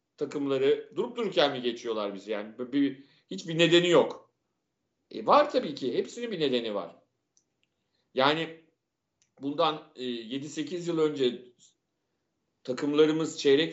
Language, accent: Turkish, native